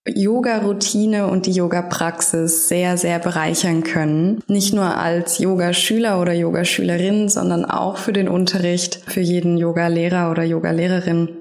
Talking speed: 125 wpm